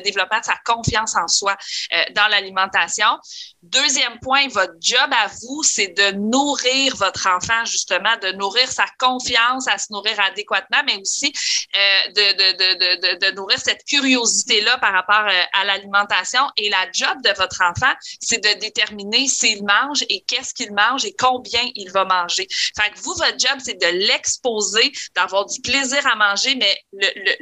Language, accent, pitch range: French, Canadian, 200-255 Hz